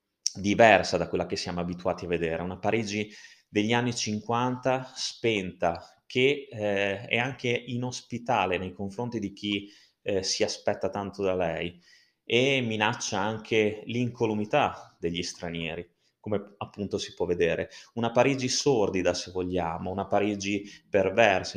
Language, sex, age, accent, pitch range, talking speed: Italian, male, 30-49, native, 95-125 Hz, 135 wpm